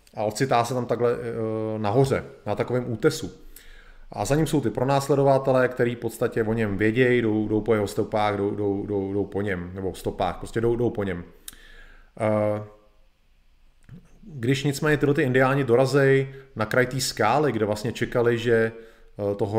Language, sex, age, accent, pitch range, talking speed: Czech, male, 30-49, native, 105-135 Hz, 130 wpm